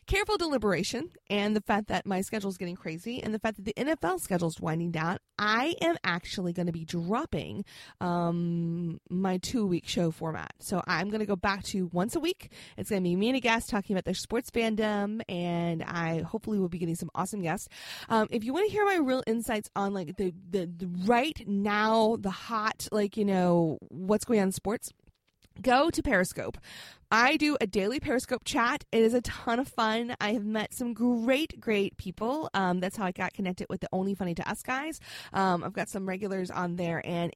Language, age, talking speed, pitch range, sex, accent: English, 20-39, 215 wpm, 170-225 Hz, female, American